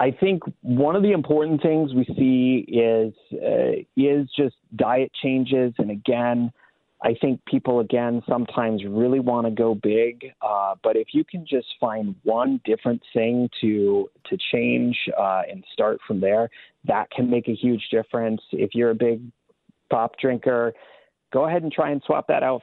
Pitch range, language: 110-135 Hz, English